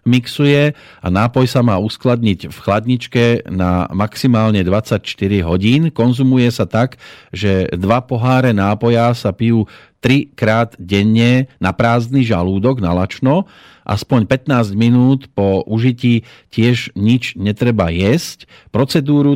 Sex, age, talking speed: male, 40-59, 110 wpm